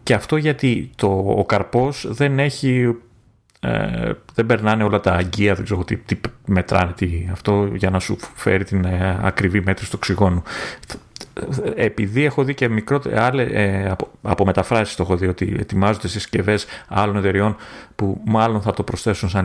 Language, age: Greek, 30-49